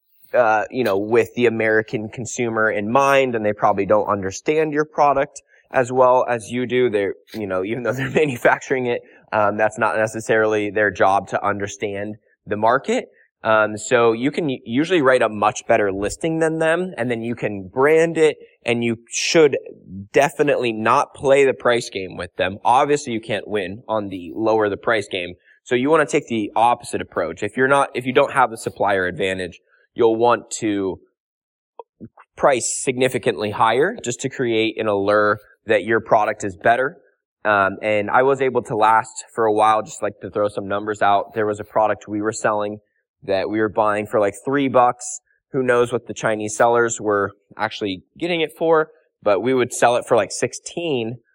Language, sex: English, male